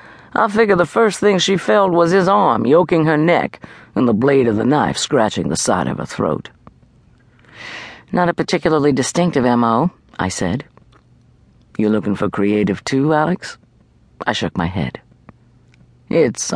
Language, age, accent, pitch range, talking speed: English, 50-69, American, 120-170 Hz, 155 wpm